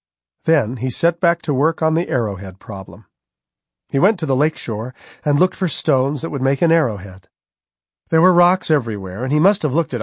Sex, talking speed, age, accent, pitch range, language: male, 210 wpm, 40-59, American, 110-160 Hz, English